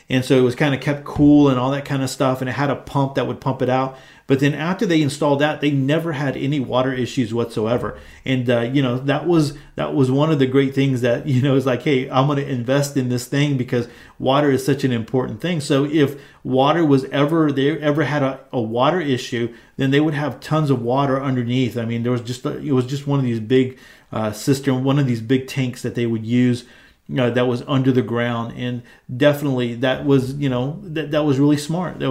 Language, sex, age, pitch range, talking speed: English, male, 40-59, 125-145 Hz, 250 wpm